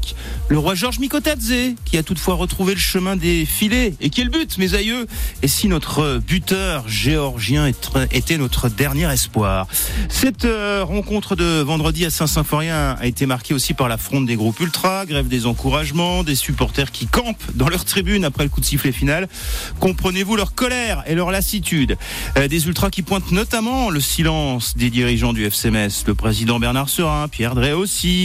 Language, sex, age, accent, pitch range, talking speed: French, male, 40-59, French, 140-205 Hz, 175 wpm